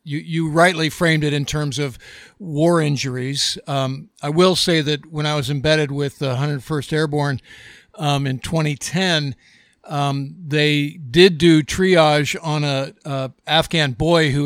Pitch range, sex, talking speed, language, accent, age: 145-175 Hz, male, 155 wpm, English, American, 50-69